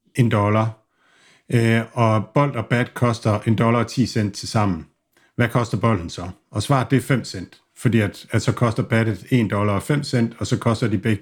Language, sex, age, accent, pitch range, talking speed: Danish, male, 50-69, native, 110-130 Hz, 220 wpm